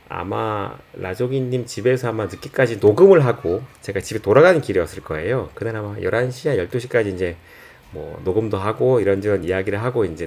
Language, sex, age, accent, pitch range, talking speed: English, male, 30-49, Korean, 110-155 Hz, 140 wpm